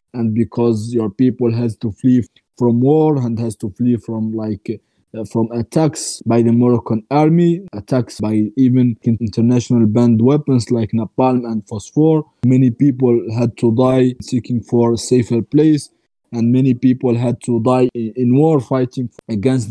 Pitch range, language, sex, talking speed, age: 115-130 Hz, Swedish, male, 160 wpm, 20-39